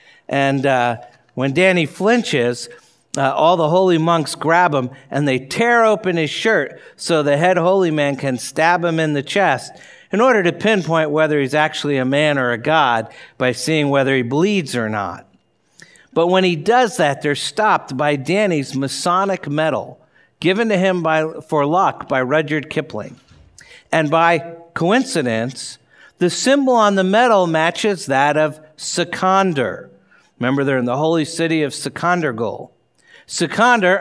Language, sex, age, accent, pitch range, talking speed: English, male, 60-79, American, 140-180 Hz, 155 wpm